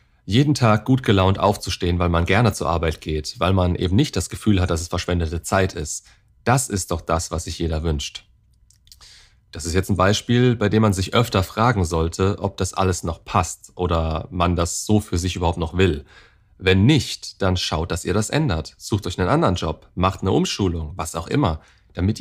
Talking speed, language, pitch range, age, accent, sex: 210 wpm, German, 85-105 Hz, 40-59, German, male